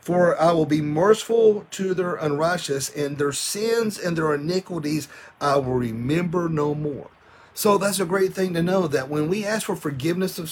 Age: 40-59